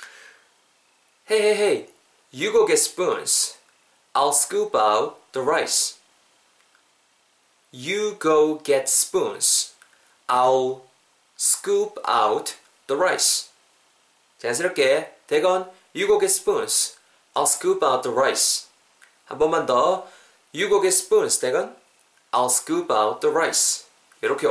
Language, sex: Korean, male